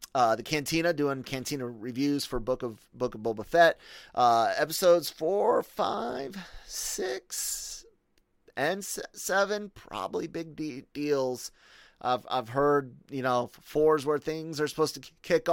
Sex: male